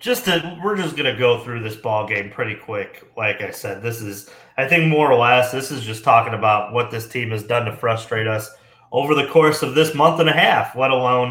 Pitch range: 120-150 Hz